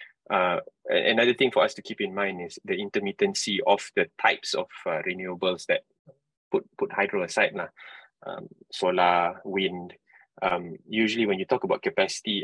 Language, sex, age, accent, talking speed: English, male, 20-39, Malaysian, 165 wpm